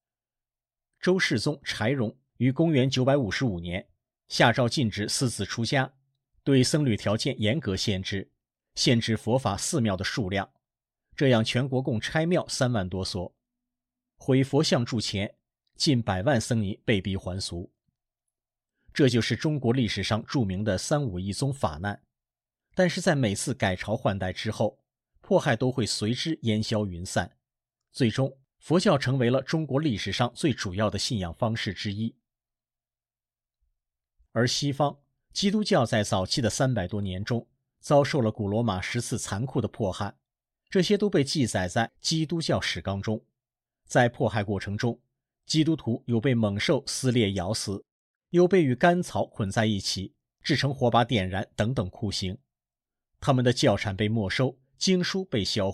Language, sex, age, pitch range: Chinese, male, 50-69, 105-135 Hz